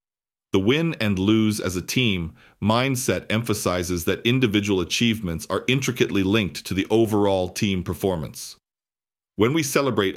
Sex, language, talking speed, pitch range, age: male, English, 135 wpm, 90-110 Hz, 40-59